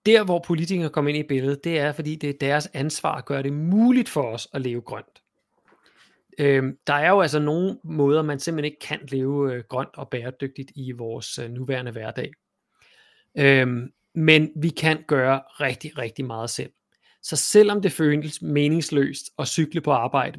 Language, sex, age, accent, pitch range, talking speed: Danish, male, 30-49, native, 135-165 Hz, 180 wpm